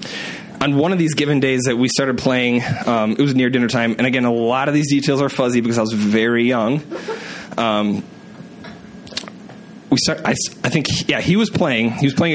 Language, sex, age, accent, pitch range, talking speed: English, male, 20-39, American, 120-150 Hz, 215 wpm